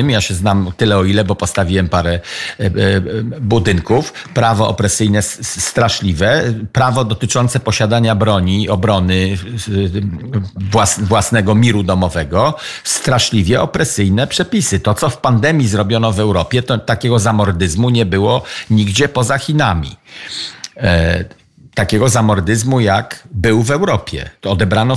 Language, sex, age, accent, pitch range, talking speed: Polish, male, 50-69, native, 100-125 Hz, 110 wpm